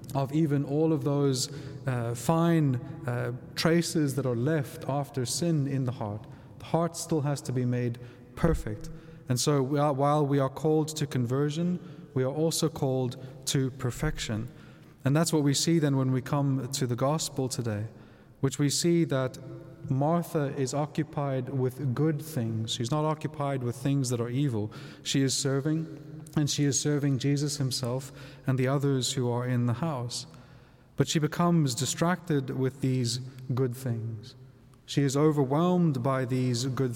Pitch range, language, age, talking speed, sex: 130-150 Hz, English, 30-49, 165 wpm, male